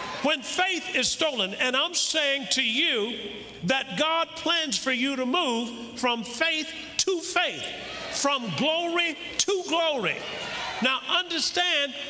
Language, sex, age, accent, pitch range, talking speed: English, male, 50-69, American, 230-315 Hz, 130 wpm